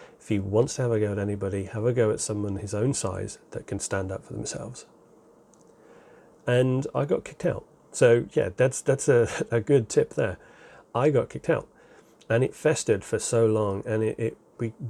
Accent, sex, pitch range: British, male, 105-115 Hz